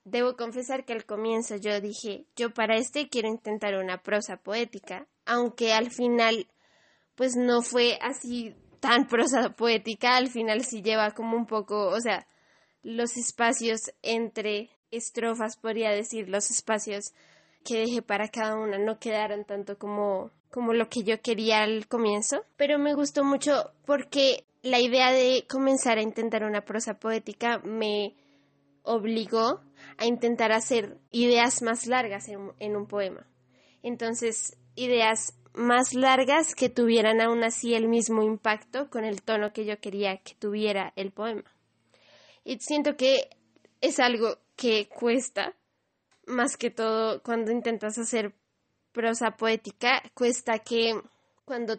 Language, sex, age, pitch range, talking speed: Spanish, female, 10-29, 215-240 Hz, 145 wpm